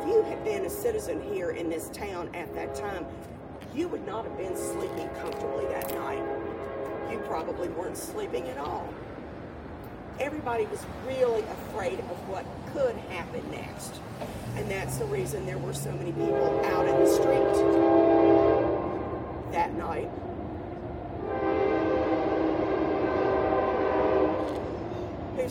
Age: 50-69